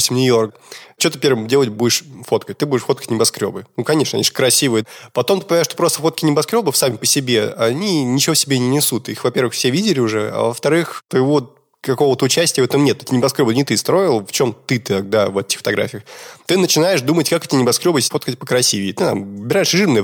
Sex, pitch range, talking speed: male, 115-150 Hz, 205 wpm